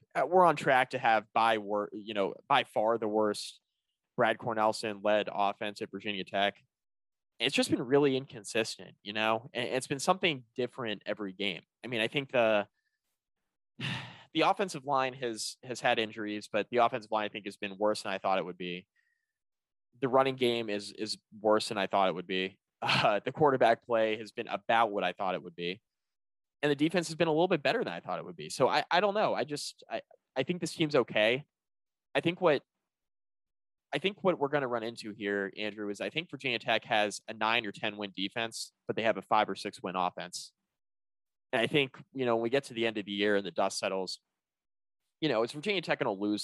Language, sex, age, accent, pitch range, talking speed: English, male, 20-39, American, 100-130 Hz, 225 wpm